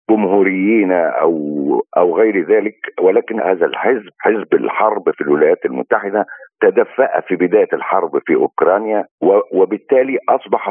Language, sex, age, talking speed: Arabic, male, 50-69, 120 wpm